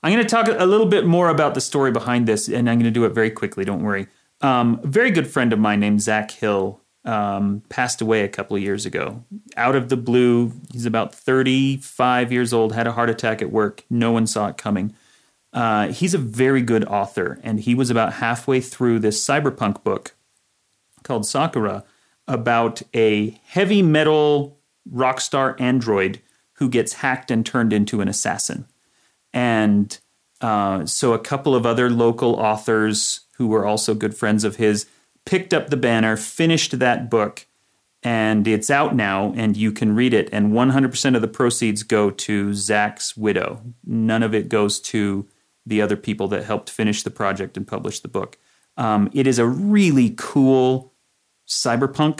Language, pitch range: English, 110-130 Hz